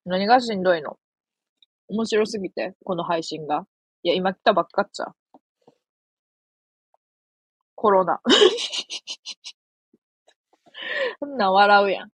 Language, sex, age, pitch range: Japanese, female, 20-39, 175-230 Hz